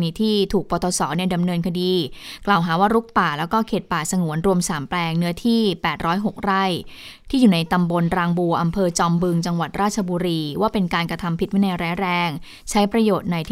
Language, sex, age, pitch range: Thai, female, 20-39, 175-215 Hz